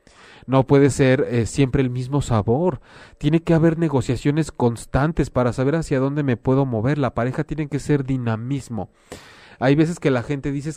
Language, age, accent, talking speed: Spanish, 40-59, Mexican, 180 wpm